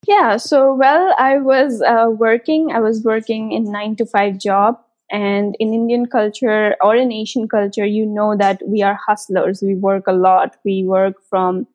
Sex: female